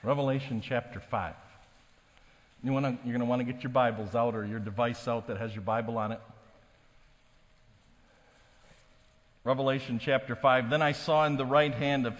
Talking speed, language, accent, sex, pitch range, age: 160 wpm, English, American, male, 115-150 Hz, 50-69